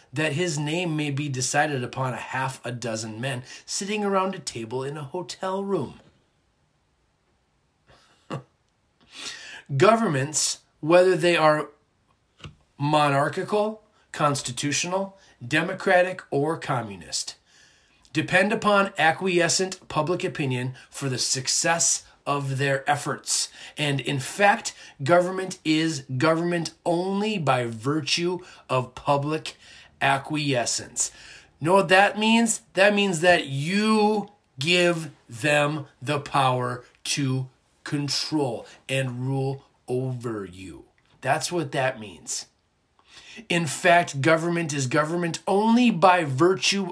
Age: 30-49